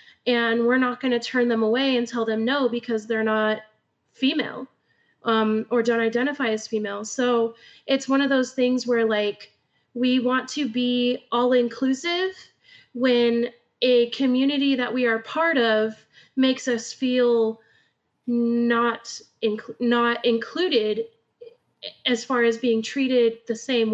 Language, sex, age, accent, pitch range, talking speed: English, female, 20-39, American, 220-250 Hz, 145 wpm